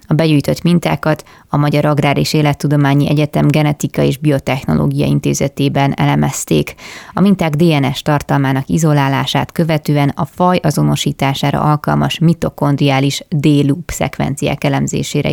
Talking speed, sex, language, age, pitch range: 110 wpm, female, Hungarian, 20-39, 140-160 Hz